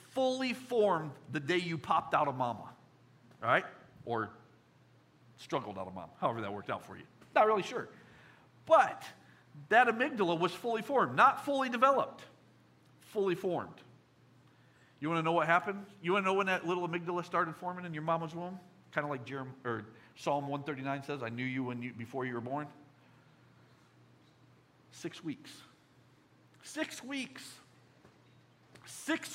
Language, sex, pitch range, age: English, male, 135-195 Hz, 50-69